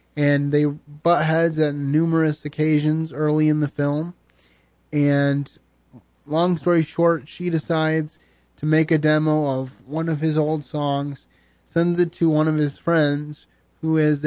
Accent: American